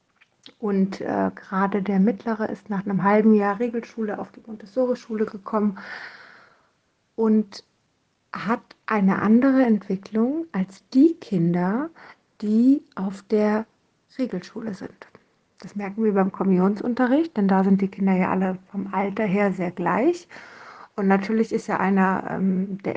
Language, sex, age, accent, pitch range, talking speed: German, female, 60-79, German, 190-225 Hz, 135 wpm